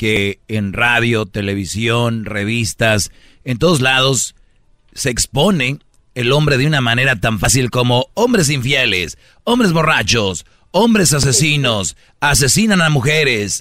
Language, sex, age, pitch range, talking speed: Spanish, male, 40-59, 110-145 Hz, 120 wpm